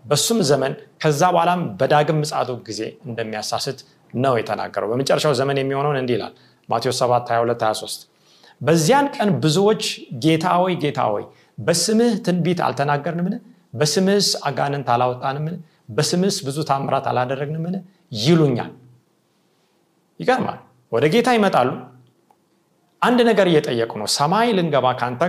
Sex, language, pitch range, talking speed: male, Amharic, 140-215 Hz, 105 wpm